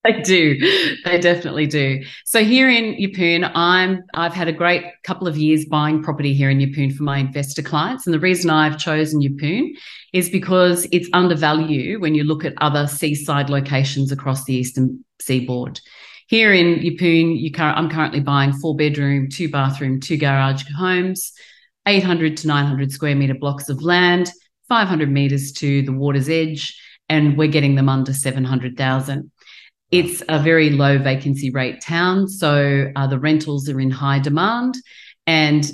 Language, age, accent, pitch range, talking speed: English, 40-59, Australian, 140-175 Hz, 170 wpm